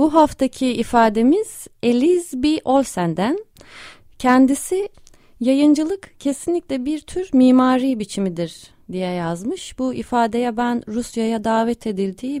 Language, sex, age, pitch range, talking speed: Turkish, female, 30-49, 190-270 Hz, 100 wpm